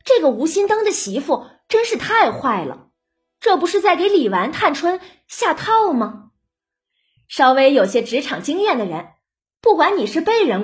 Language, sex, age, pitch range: Chinese, female, 20-39, 265-380 Hz